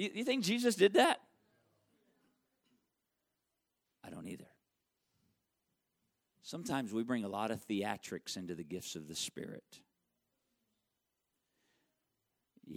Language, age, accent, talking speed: English, 50-69, American, 105 wpm